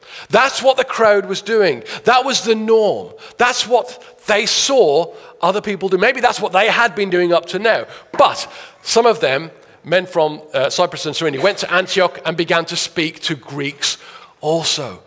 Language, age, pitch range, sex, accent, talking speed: English, 40-59, 185-245 Hz, male, British, 185 wpm